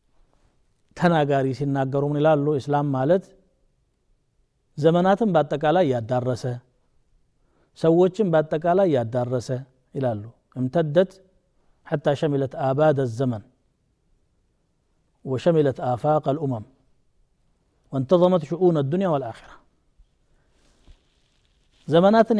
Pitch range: 140-190 Hz